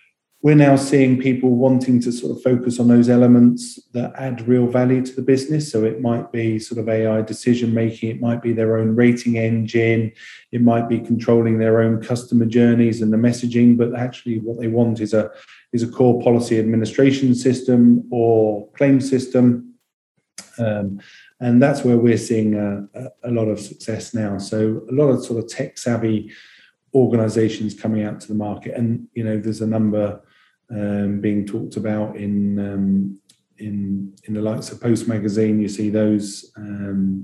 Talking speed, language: 175 wpm, English